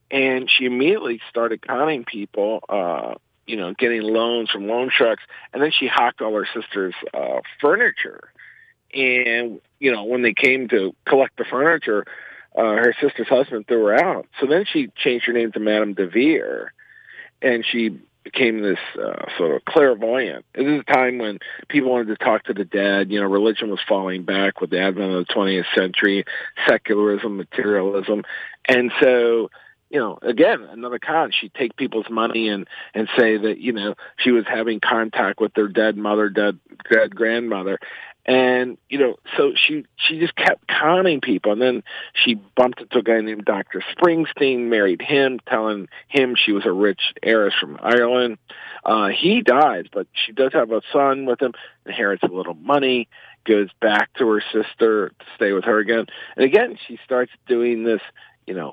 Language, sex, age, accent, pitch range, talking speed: English, male, 50-69, American, 105-130 Hz, 180 wpm